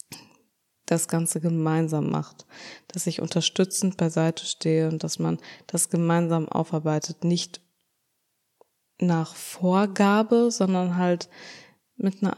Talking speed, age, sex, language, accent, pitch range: 105 wpm, 20-39, female, German, German, 160-180 Hz